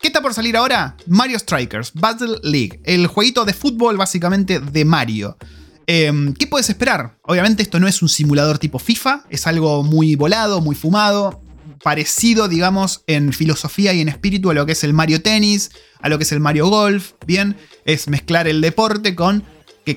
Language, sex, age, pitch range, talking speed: Spanish, male, 30-49, 150-220 Hz, 185 wpm